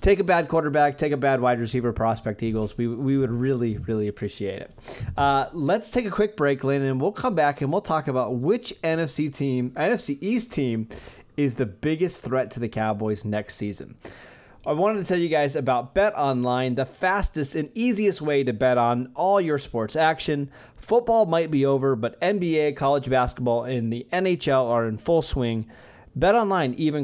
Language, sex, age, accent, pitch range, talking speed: English, male, 20-39, American, 125-160 Hz, 190 wpm